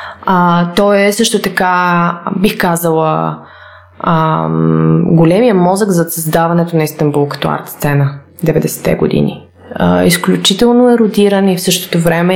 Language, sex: Bulgarian, female